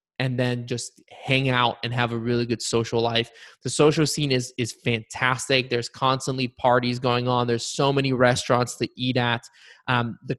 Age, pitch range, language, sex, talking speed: 20-39, 120-135 Hz, English, male, 185 wpm